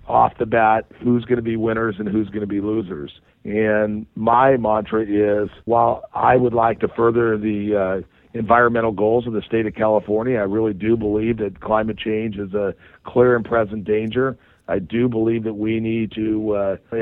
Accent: American